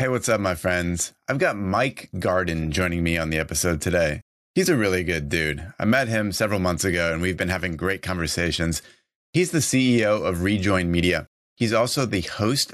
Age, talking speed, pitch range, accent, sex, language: 30-49, 200 wpm, 90-105 Hz, American, male, English